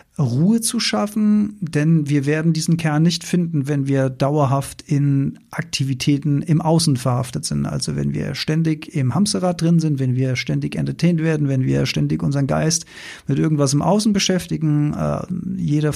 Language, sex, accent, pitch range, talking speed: German, male, German, 135-185 Hz, 165 wpm